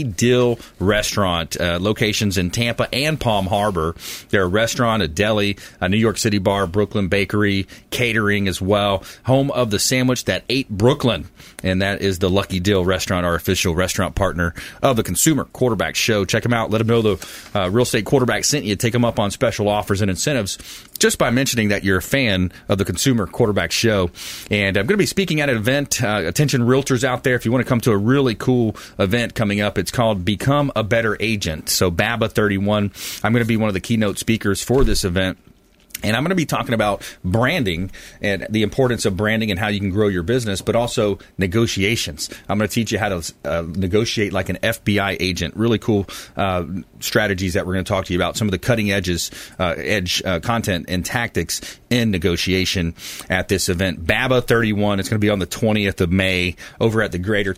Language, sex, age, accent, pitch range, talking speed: English, male, 30-49, American, 95-115 Hz, 215 wpm